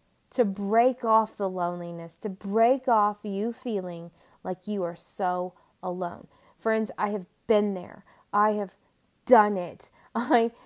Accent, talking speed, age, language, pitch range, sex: American, 140 wpm, 20-39, English, 165-200 Hz, female